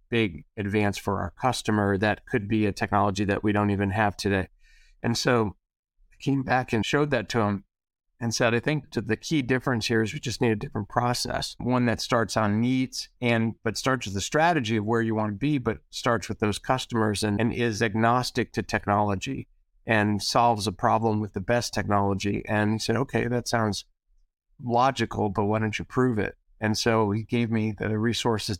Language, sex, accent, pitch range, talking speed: English, male, American, 105-120 Hz, 200 wpm